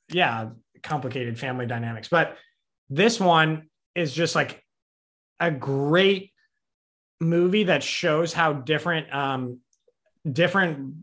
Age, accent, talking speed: 20-39, American, 105 wpm